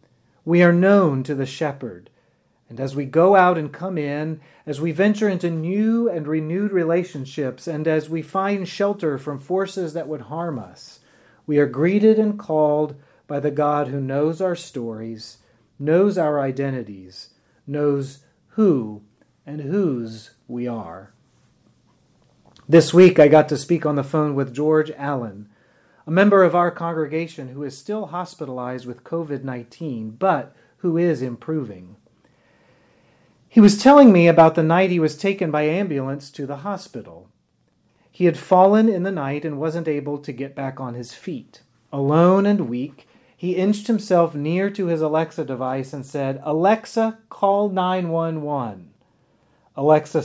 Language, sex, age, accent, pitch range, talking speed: English, male, 40-59, American, 135-180 Hz, 155 wpm